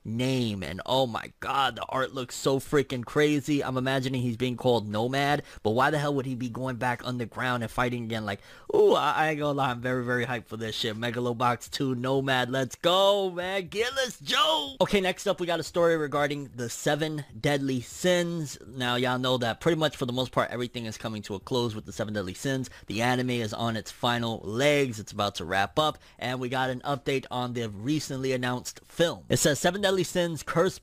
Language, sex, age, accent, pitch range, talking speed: English, male, 20-39, American, 125-155 Hz, 225 wpm